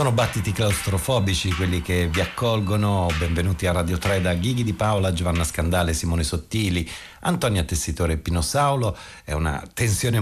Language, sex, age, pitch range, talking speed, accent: Italian, male, 50-69, 85-105 Hz, 160 wpm, native